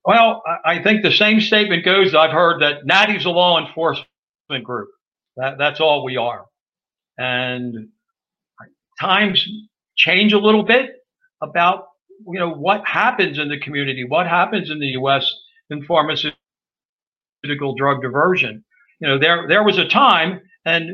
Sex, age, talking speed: male, 60-79, 145 wpm